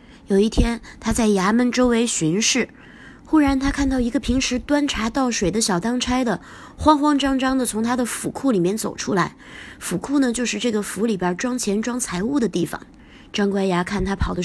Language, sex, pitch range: Chinese, female, 185-250 Hz